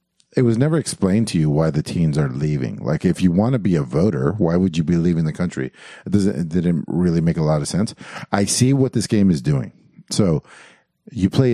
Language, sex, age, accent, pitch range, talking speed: English, male, 50-69, American, 85-130 Hz, 240 wpm